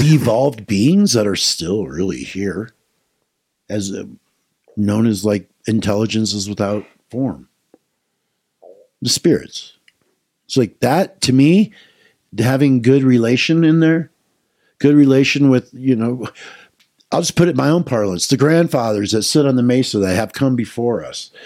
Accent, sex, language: American, male, English